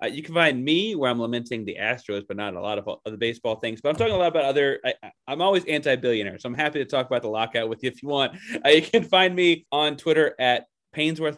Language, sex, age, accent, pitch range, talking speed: English, male, 30-49, American, 105-135 Hz, 275 wpm